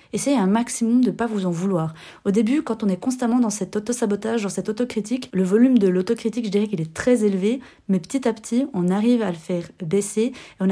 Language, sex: French, female